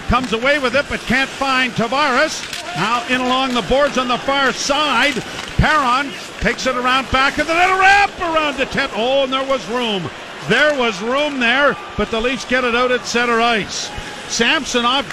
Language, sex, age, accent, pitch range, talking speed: English, male, 50-69, American, 230-295 Hz, 190 wpm